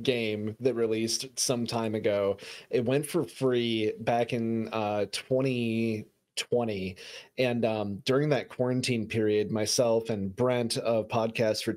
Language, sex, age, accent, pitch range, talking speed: English, male, 30-49, American, 115-135 Hz, 140 wpm